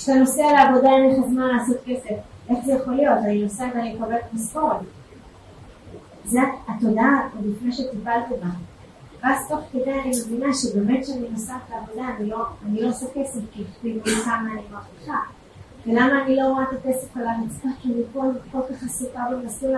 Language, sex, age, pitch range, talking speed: Hebrew, female, 20-39, 230-275 Hz, 165 wpm